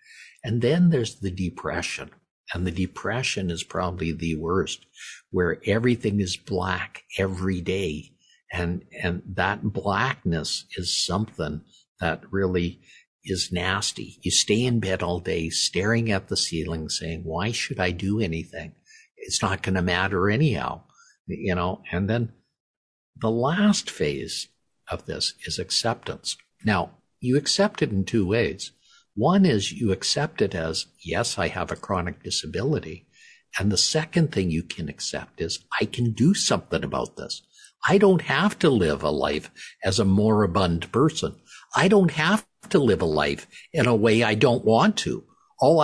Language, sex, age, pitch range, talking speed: English, male, 60-79, 90-145 Hz, 155 wpm